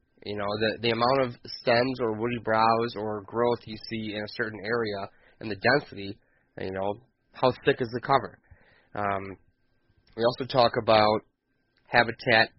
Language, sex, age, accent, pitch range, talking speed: English, male, 20-39, American, 105-120 Hz, 160 wpm